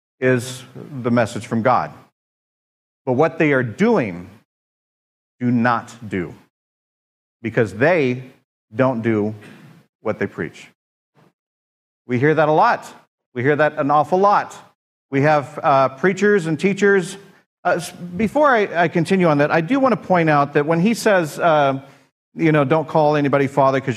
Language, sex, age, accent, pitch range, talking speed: English, male, 40-59, American, 125-170 Hz, 155 wpm